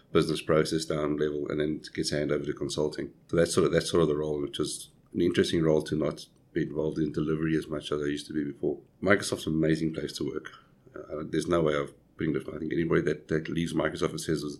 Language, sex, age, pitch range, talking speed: English, male, 50-69, 75-85 Hz, 250 wpm